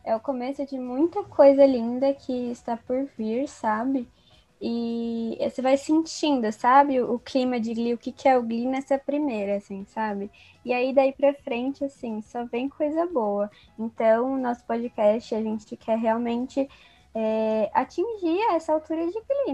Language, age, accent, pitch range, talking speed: Portuguese, 20-39, Brazilian, 225-270 Hz, 165 wpm